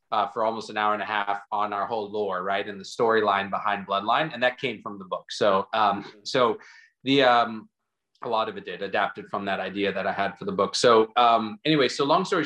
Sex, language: male, English